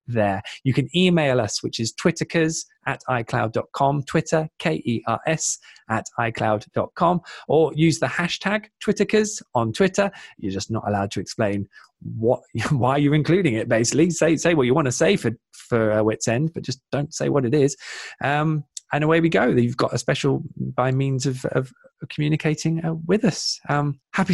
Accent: British